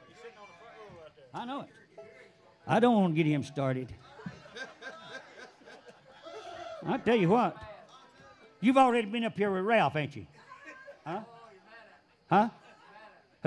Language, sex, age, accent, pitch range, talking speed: English, male, 60-79, American, 165-245 Hz, 105 wpm